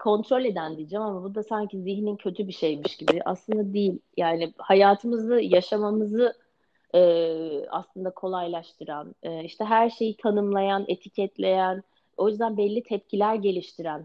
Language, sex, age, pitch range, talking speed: Turkish, female, 30-49, 170-215 Hz, 130 wpm